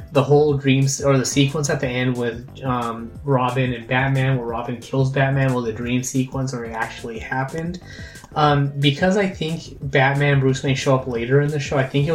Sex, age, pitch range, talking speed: male, 20-39, 120-140 Hz, 205 wpm